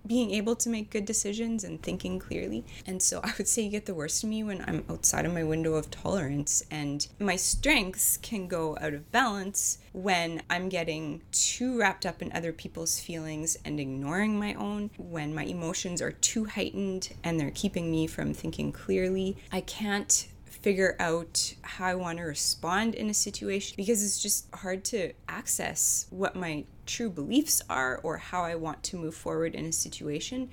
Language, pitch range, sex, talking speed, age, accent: English, 150-200 Hz, female, 190 wpm, 20-39, American